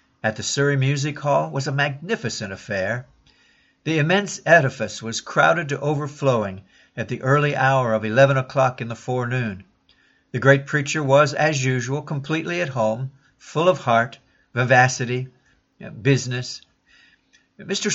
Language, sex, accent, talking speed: English, male, American, 135 wpm